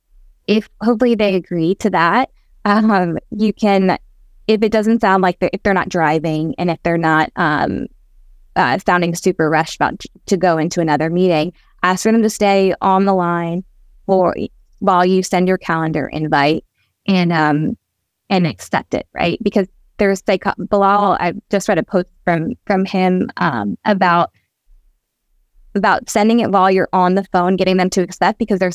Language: English